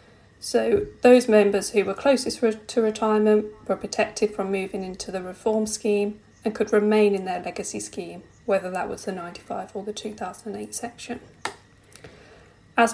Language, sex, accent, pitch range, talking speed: English, female, British, 195-220 Hz, 155 wpm